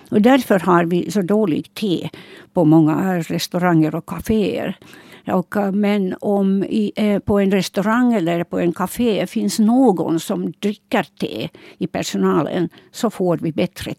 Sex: female